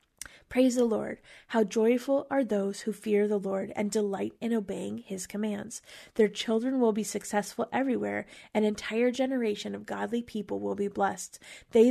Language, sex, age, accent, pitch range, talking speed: English, female, 30-49, American, 200-225 Hz, 165 wpm